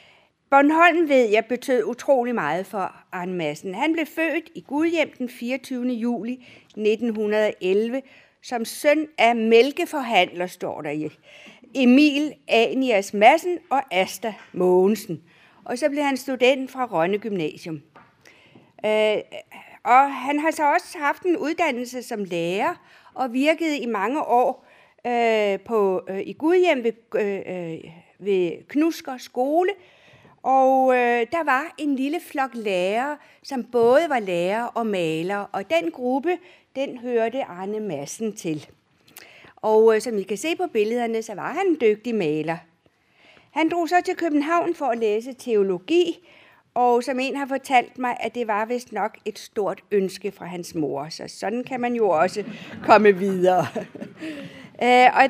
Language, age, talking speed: Danish, 60-79, 140 wpm